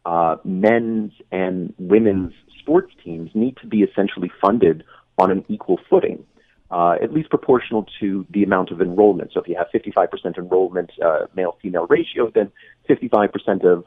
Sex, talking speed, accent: male, 155 wpm, American